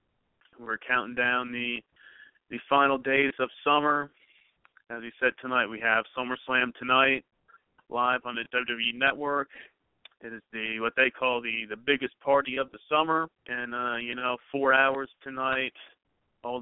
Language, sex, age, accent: English, male, 40-59, American